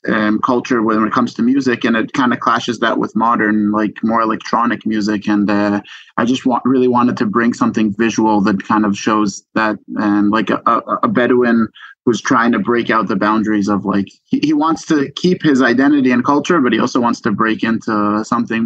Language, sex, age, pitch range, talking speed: English, male, 20-39, 105-125 Hz, 210 wpm